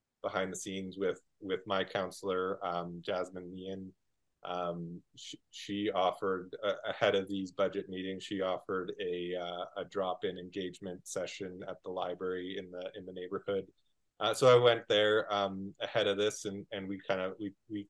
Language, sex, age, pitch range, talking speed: English, male, 20-39, 95-110 Hz, 180 wpm